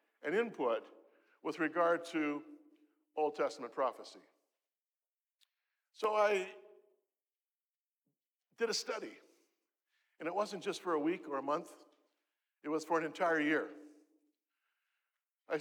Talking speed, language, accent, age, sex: 115 wpm, English, American, 50-69, male